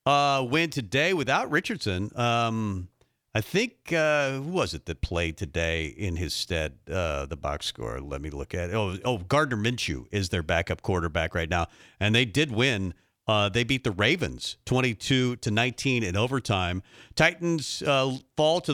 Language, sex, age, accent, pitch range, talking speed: English, male, 50-69, American, 105-140 Hz, 175 wpm